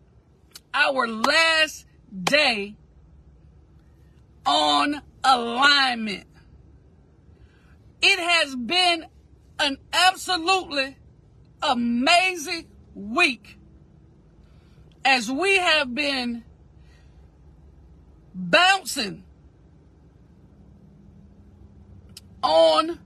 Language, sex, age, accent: English, female, 40-59, American